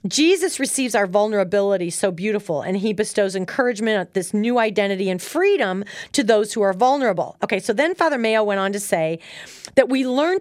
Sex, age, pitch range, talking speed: female, 40-59, 185-245 Hz, 185 wpm